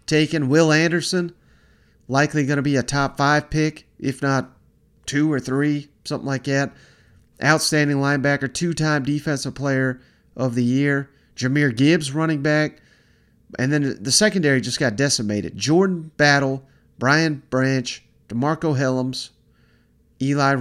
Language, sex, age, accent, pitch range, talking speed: English, male, 40-59, American, 130-155 Hz, 130 wpm